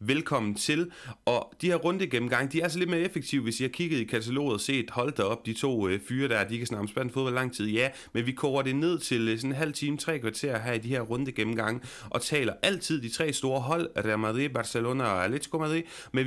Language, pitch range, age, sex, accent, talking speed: Danish, 115-150 Hz, 30-49, male, native, 240 wpm